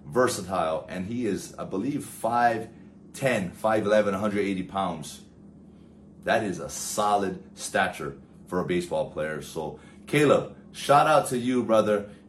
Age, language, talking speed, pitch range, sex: 30-49, English, 125 wpm, 90-120 Hz, male